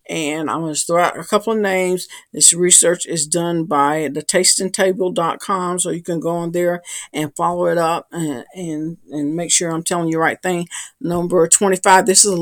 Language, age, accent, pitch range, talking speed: English, 50-69, American, 160-190 Hz, 215 wpm